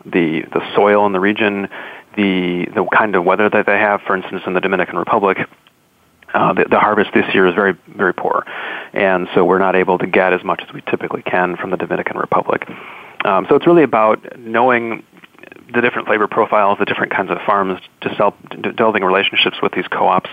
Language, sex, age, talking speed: English, male, 30-49, 205 wpm